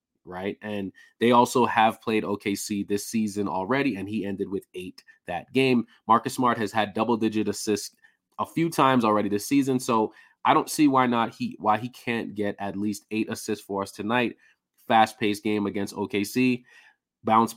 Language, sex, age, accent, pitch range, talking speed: English, male, 20-39, American, 105-130 Hz, 180 wpm